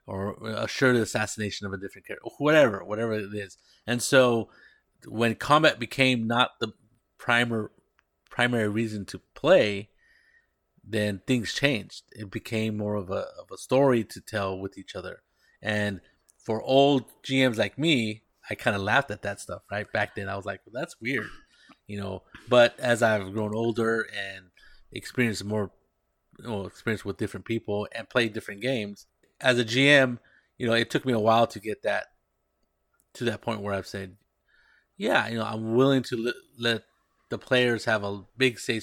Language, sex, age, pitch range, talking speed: English, male, 30-49, 100-120 Hz, 175 wpm